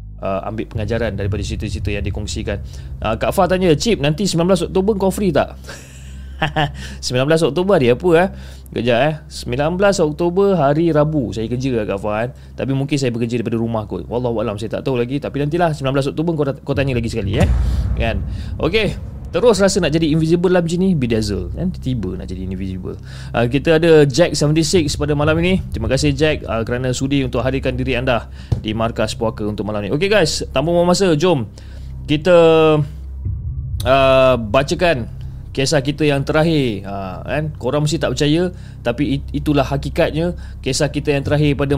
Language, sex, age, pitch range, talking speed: Malay, male, 20-39, 110-155 Hz, 180 wpm